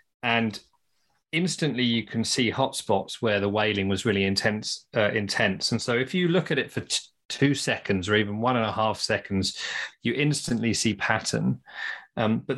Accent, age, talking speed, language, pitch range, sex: British, 40-59, 175 wpm, English, 105-130 Hz, male